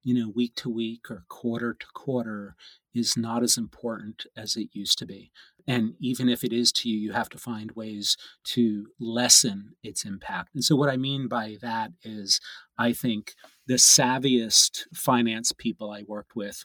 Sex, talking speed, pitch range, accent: male, 185 wpm, 110-125 Hz, American